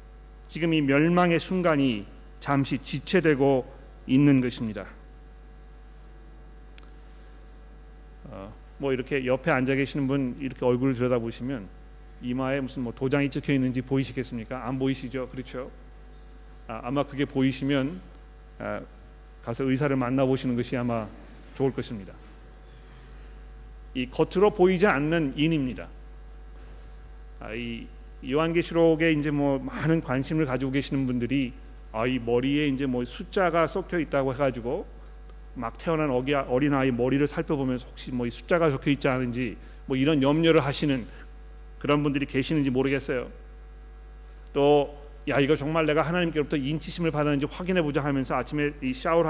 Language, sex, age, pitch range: Korean, male, 40-59, 125-150 Hz